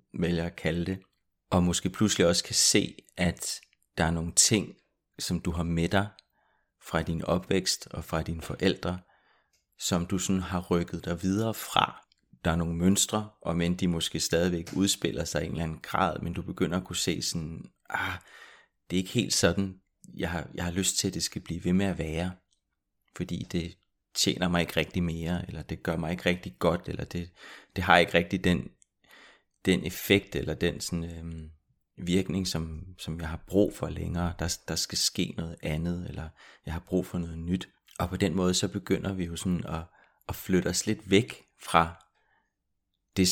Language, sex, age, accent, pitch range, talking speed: Danish, male, 30-49, native, 85-95 Hz, 195 wpm